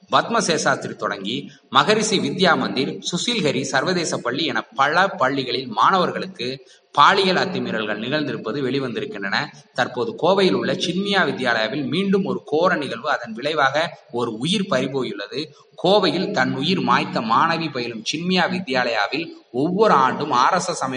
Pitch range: 125-185 Hz